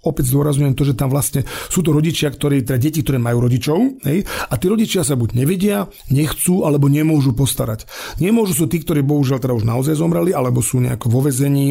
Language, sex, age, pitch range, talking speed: Slovak, male, 40-59, 130-160 Hz, 205 wpm